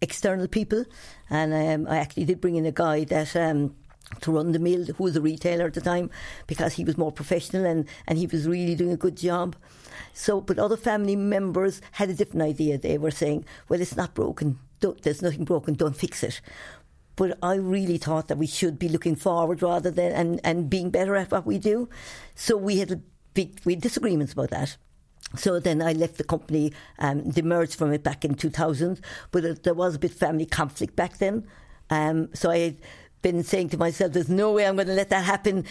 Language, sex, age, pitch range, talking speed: English, female, 60-79, 155-180 Hz, 220 wpm